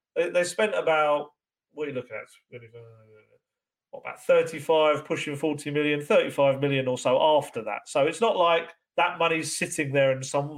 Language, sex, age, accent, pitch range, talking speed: English, male, 40-59, British, 135-165 Hz, 185 wpm